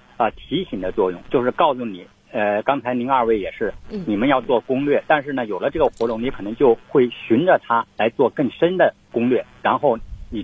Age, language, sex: 50-69, Chinese, male